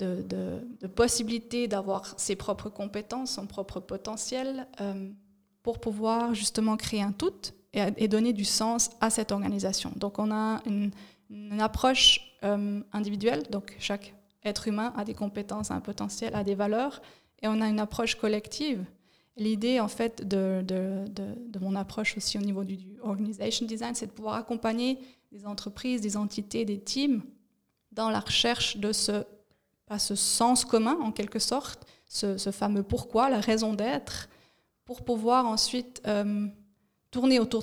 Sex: female